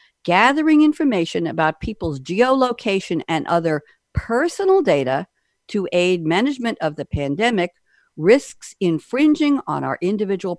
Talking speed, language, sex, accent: 115 wpm, English, female, American